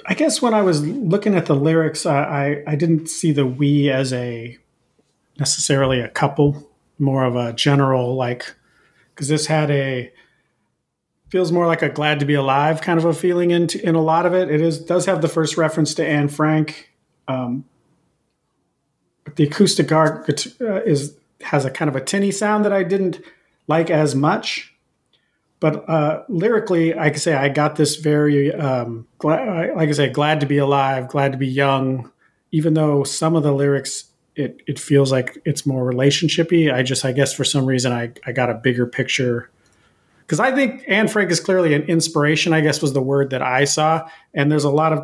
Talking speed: 195 wpm